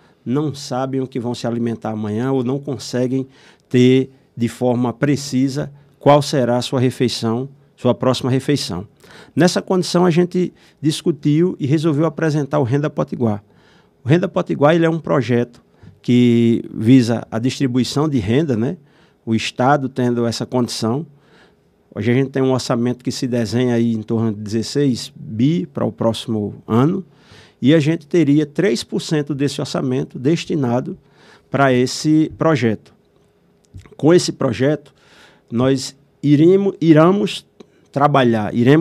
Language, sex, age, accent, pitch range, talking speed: Portuguese, male, 50-69, Brazilian, 120-155 Hz, 140 wpm